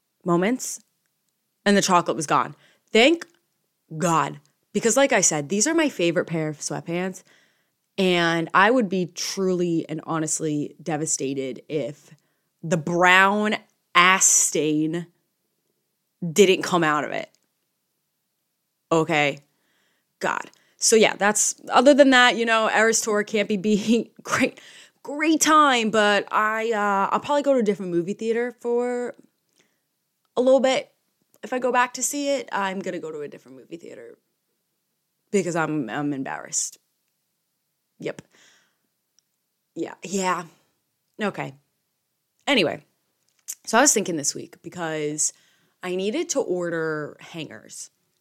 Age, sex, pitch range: 20-39, female, 170-235 Hz